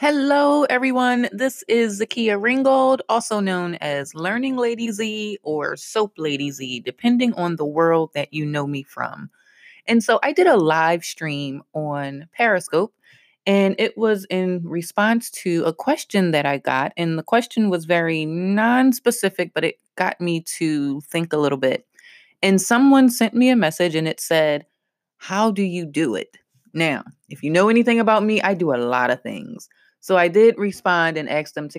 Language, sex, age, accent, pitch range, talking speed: English, female, 20-39, American, 150-225 Hz, 180 wpm